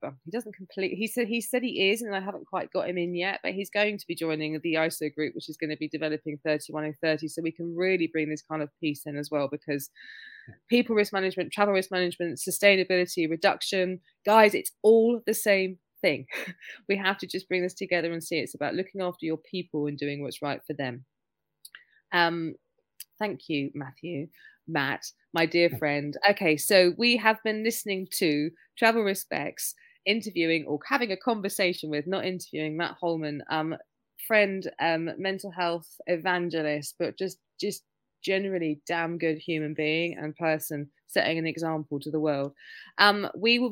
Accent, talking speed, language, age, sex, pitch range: British, 185 wpm, English, 20-39, female, 155-195 Hz